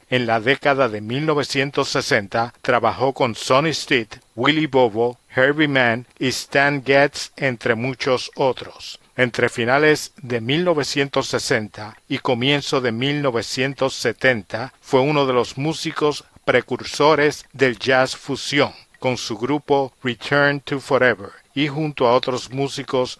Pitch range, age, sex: 120-140 Hz, 50-69, male